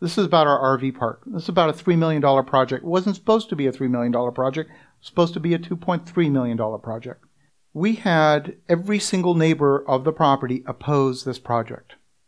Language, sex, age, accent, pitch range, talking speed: English, male, 50-69, American, 135-175 Hz, 205 wpm